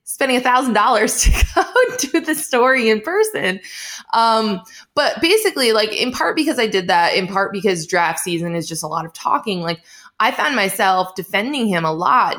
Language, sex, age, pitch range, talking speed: English, female, 20-39, 165-220 Hz, 185 wpm